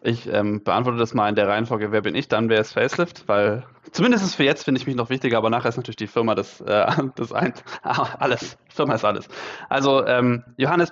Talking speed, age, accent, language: 225 wpm, 20-39, German, German